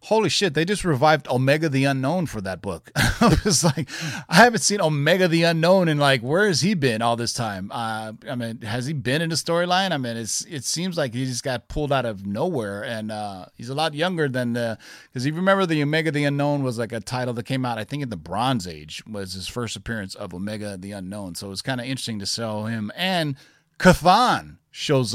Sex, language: male, English